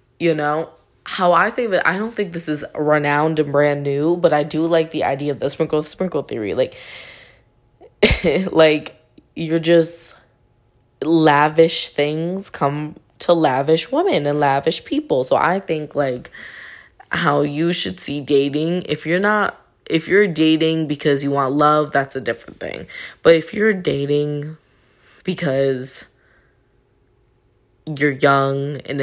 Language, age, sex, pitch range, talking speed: English, 20-39, female, 140-170 Hz, 145 wpm